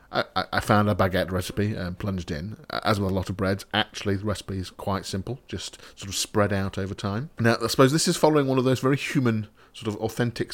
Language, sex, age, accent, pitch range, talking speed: English, male, 30-49, British, 90-115 Hz, 240 wpm